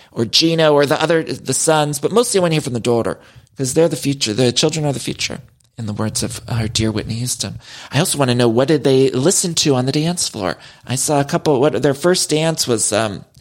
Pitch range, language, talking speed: 115-155 Hz, English, 255 wpm